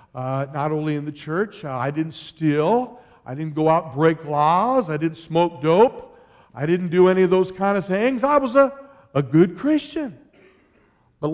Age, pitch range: 60-79, 140-180 Hz